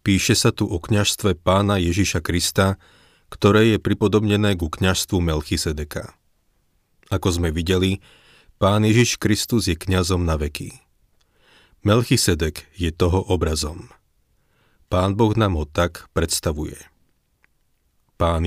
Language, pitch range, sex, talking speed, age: Slovak, 85-105 Hz, male, 115 wpm, 30-49